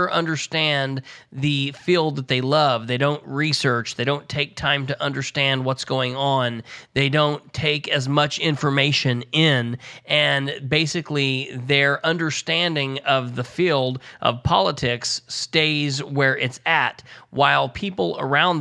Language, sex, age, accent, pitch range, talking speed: English, male, 30-49, American, 135-160 Hz, 130 wpm